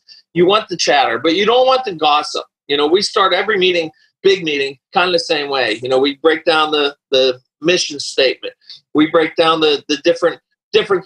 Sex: male